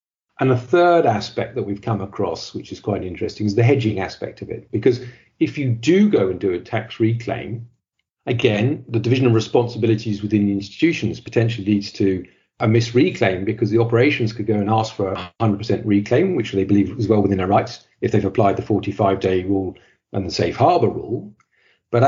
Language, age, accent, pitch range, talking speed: English, 50-69, British, 105-125 Hz, 200 wpm